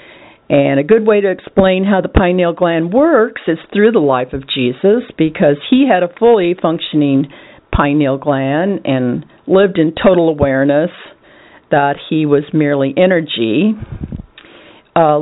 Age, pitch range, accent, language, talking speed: 50-69, 155-230 Hz, American, English, 140 wpm